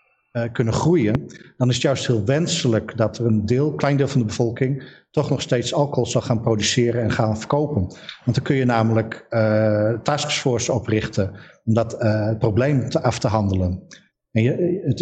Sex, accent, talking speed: male, Dutch, 190 wpm